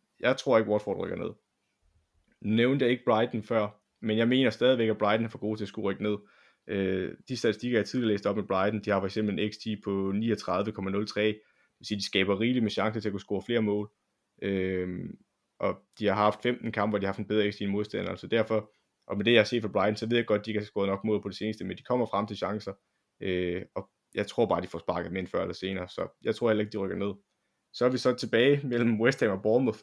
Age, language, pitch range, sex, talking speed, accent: 20-39, Danish, 100-115 Hz, male, 265 wpm, native